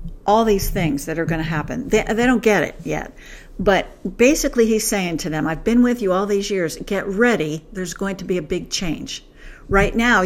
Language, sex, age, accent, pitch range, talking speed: English, female, 60-79, American, 175-220 Hz, 220 wpm